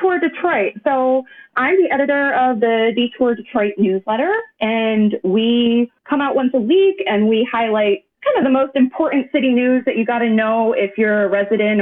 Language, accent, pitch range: English, American, 190-275 Hz